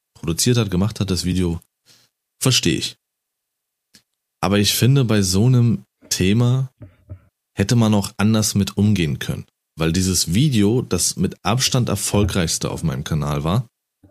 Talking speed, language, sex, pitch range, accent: 140 wpm, German, male, 95-115 Hz, German